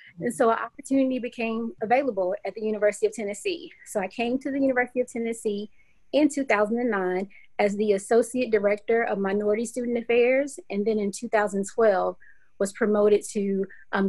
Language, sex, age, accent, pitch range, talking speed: English, female, 30-49, American, 205-245 Hz, 160 wpm